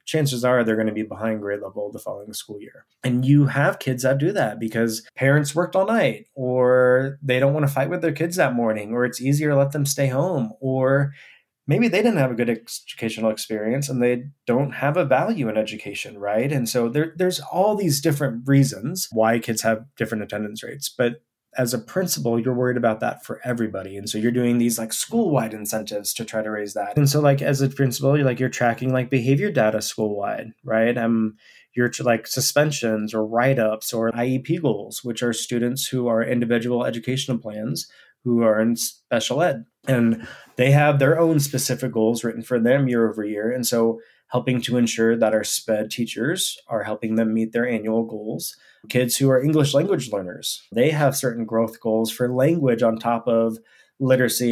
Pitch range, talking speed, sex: 115-140 Hz, 200 wpm, male